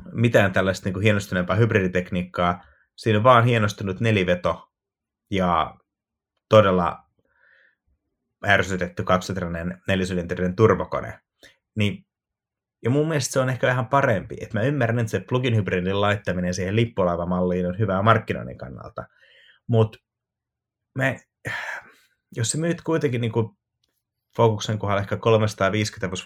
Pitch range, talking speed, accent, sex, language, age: 90-115 Hz, 110 wpm, native, male, Finnish, 30-49